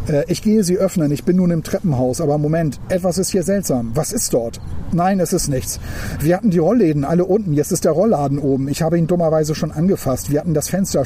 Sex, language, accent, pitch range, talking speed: male, German, German, 135-190 Hz, 235 wpm